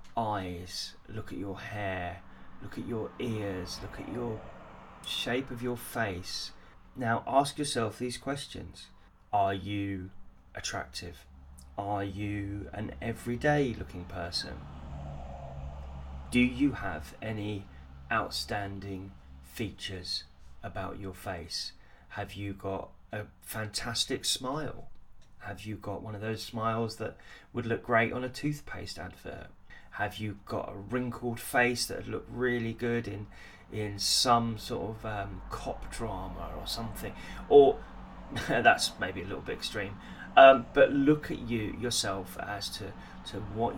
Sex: male